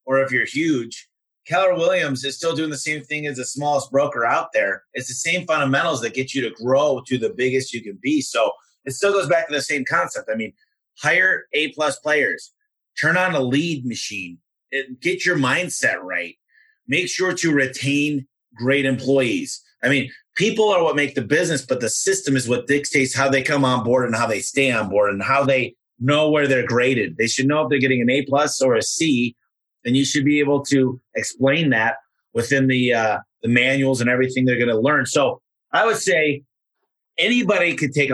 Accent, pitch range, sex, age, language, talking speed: American, 125-145 Hz, male, 30-49, English, 205 wpm